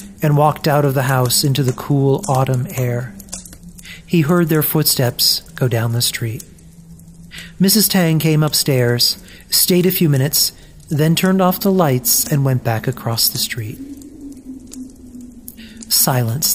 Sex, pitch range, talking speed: male, 125-165 Hz, 140 wpm